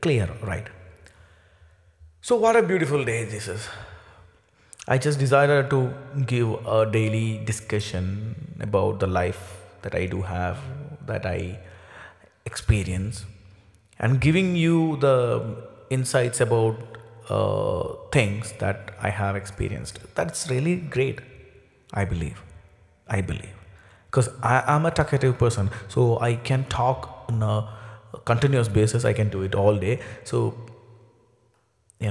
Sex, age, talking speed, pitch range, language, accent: male, 30-49, 125 wpm, 100-135 Hz, English, Indian